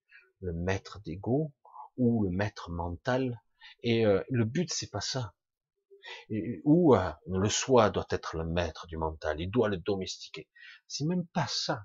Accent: French